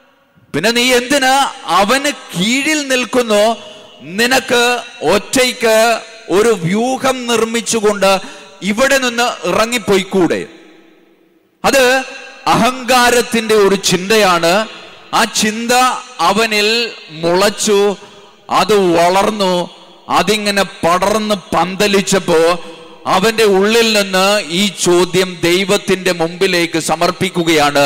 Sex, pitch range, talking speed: male, 195-245 Hz, 55 wpm